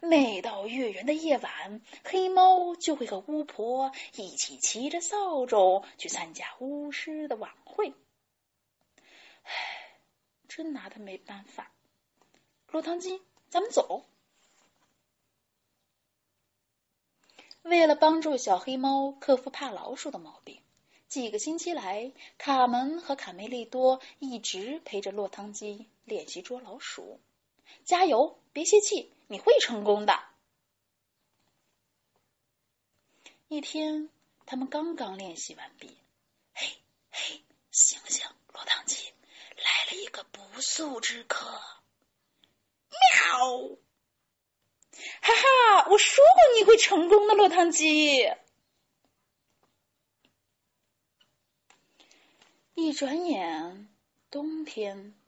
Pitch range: 235-345 Hz